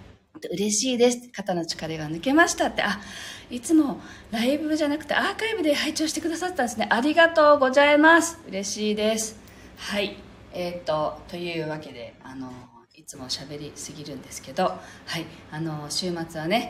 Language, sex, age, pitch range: Japanese, female, 40-59, 155-245 Hz